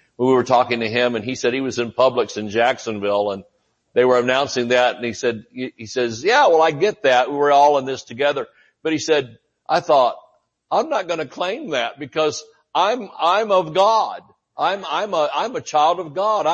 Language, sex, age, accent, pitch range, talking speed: English, male, 60-79, American, 125-180 Hz, 210 wpm